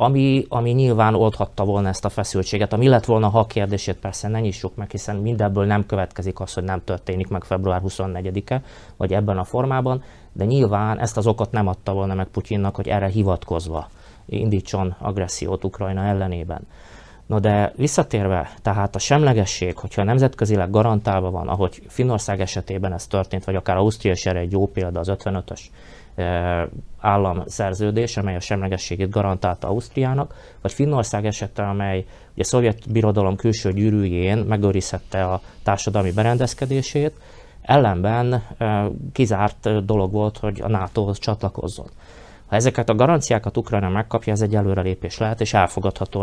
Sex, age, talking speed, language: male, 20-39, 145 wpm, Hungarian